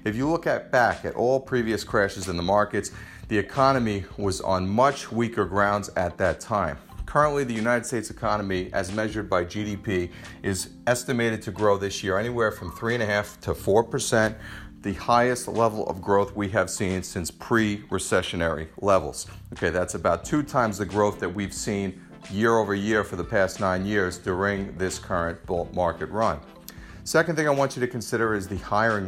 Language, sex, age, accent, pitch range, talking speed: English, male, 40-59, American, 90-110 Hz, 175 wpm